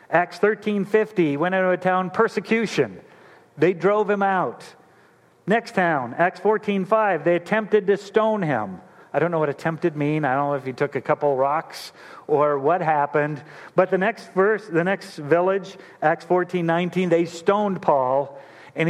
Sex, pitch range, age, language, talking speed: male, 150-190 Hz, 50-69, English, 165 wpm